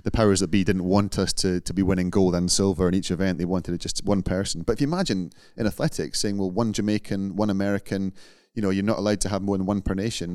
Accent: British